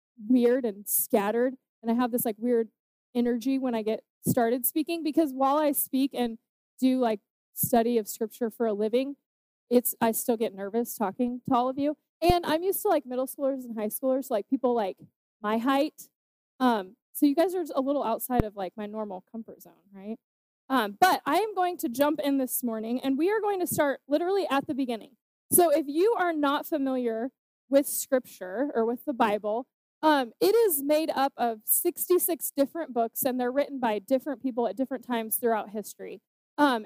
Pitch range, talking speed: 235-305 Hz, 200 wpm